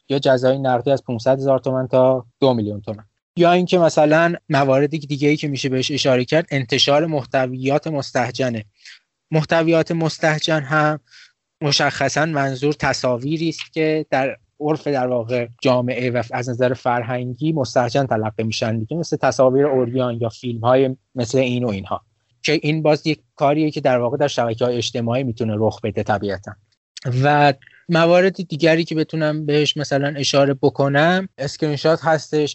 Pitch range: 125-155 Hz